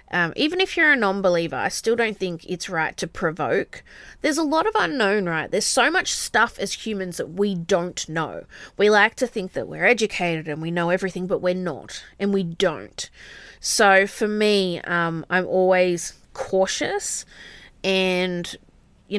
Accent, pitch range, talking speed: Australian, 165-205 Hz, 175 wpm